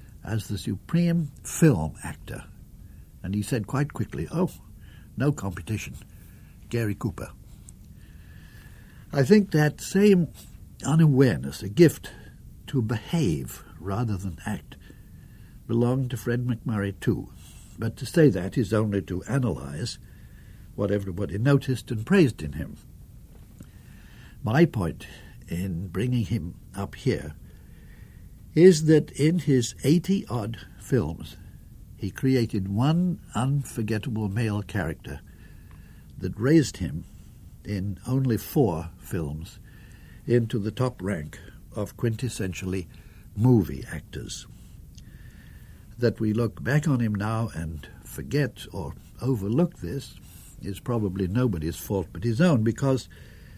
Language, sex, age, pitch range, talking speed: English, male, 60-79, 95-130 Hz, 115 wpm